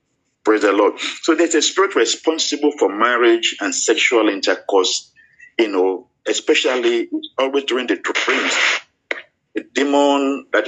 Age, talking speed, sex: 50-69, 130 wpm, male